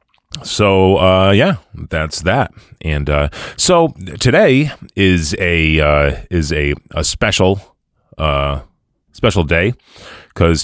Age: 30-49